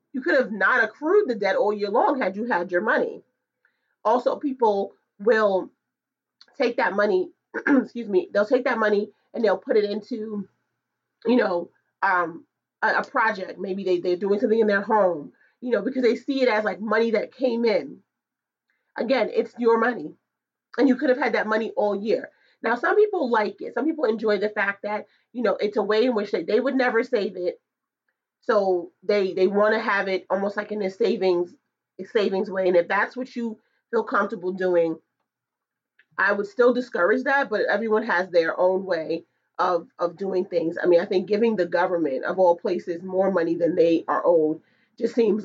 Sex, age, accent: female, 30-49, American